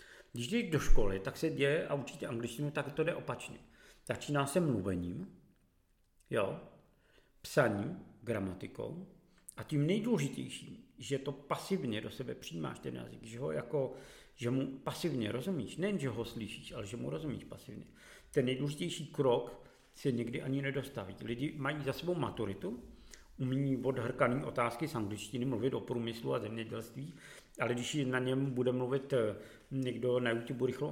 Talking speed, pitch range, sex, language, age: 155 wpm, 115-150 Hz, male, Czech, 50-69